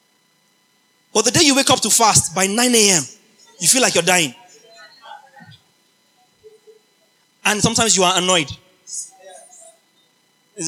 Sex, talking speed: male, 130 wpm